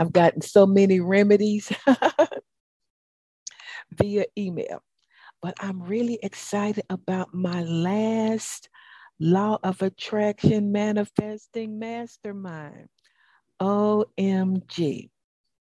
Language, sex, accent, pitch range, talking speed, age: English, female, American, 165-210 Hz, 75 wpm, 60-79